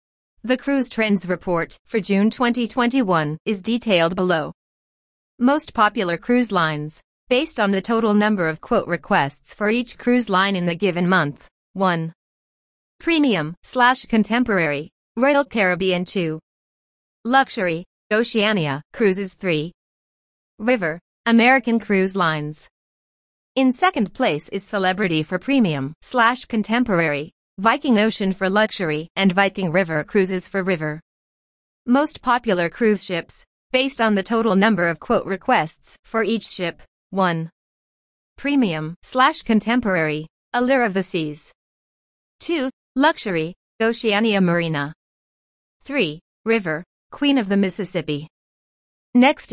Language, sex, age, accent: English, female, 30-49, American